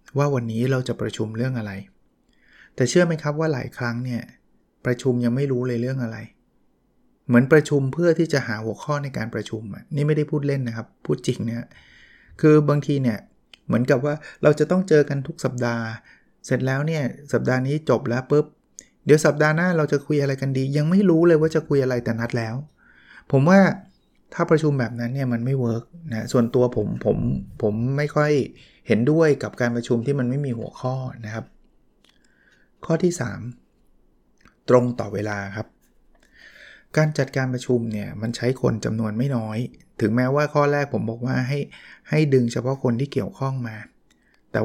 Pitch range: 120-150 Hz